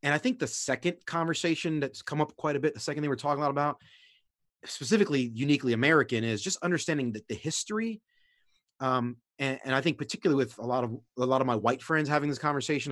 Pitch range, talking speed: 125-155 Hz, 215 wpm